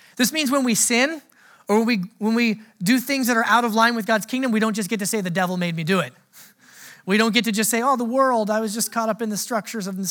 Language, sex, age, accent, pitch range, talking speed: English, male, 30-49, American, 185-235 Hz, 295 wpm